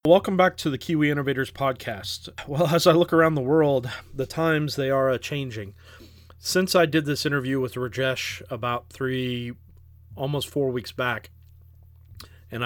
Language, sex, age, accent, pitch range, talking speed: English, male, 30-49, American, 110-145 Hz, 155 wpm